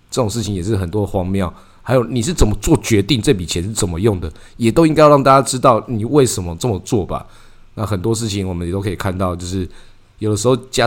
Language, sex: Chinese, male